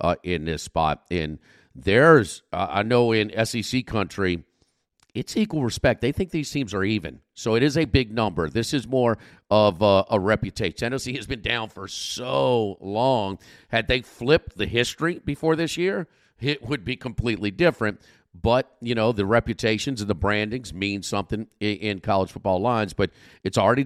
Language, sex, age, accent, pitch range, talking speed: English, male, 50-69, American, 95-125 Hz, 180 wpm